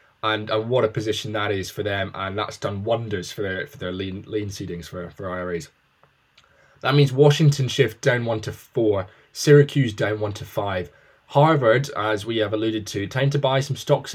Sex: male